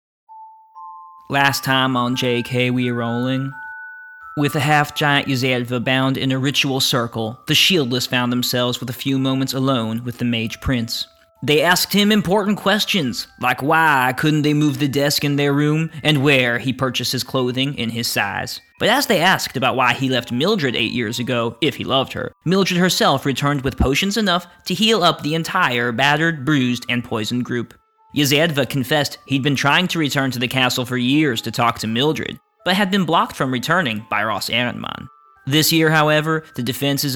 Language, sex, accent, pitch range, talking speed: English, male, American, 125-160 Hz, 185 wpm